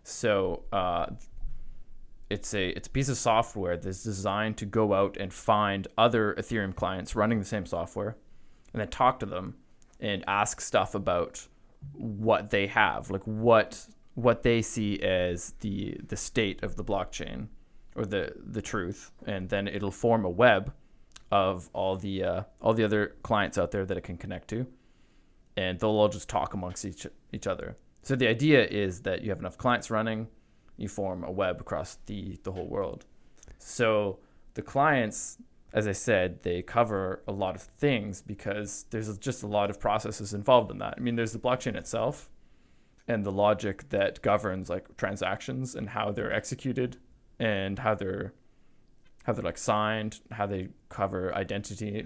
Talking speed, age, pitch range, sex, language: 175 wpm, 20-39, 95-110 Hz, male, English